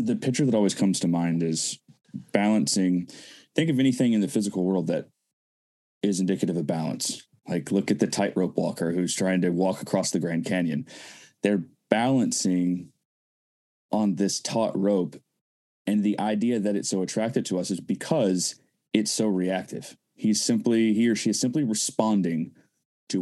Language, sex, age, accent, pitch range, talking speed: English, male, 20-39, American, 95-110 Hz, 165 wpm